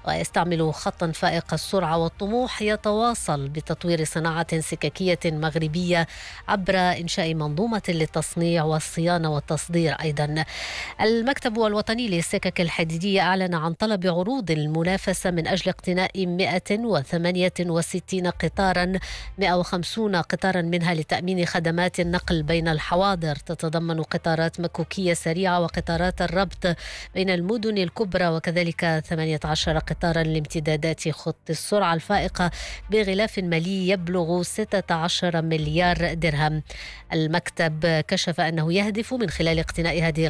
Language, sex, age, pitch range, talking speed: English, female, 20-39, 165-190 Hz, 105 wpm